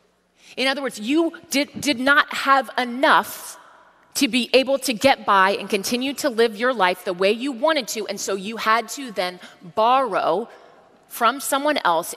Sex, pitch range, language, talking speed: female, 195-270 Hz, English, 180 wpm